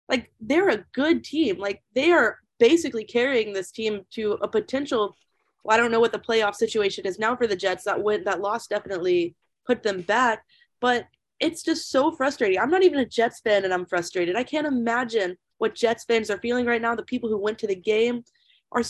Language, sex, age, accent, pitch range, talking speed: English, female, 20-39, American, 205-260 Hz, 215 wpm